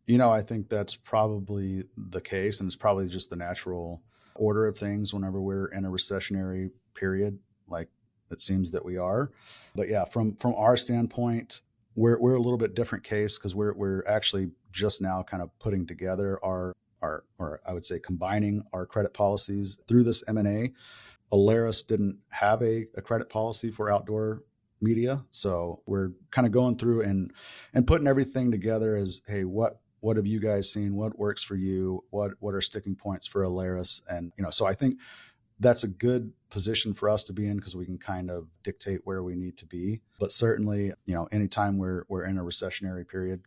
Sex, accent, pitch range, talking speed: male, American, 95-110 Hz, 195 wpm